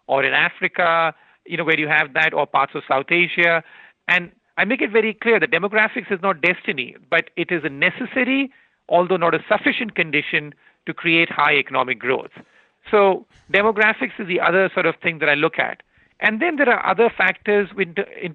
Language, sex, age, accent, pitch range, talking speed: English, male, 40-59, Indian, 165-200 Hz, 195 wpm